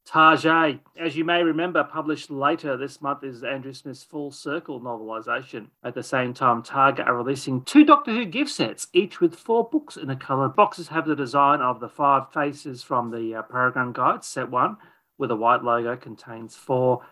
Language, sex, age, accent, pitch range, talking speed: English, male, 40-59, Australian, 125-165 Hz, 195 wpm